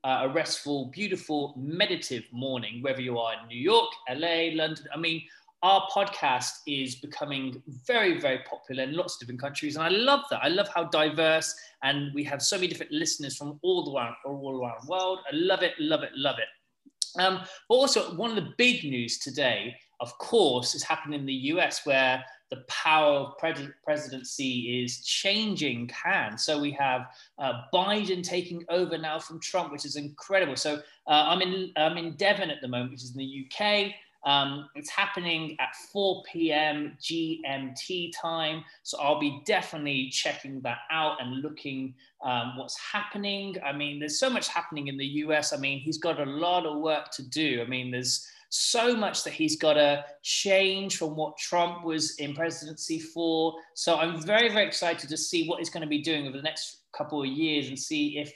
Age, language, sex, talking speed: 20-39, English, male, 190 wpm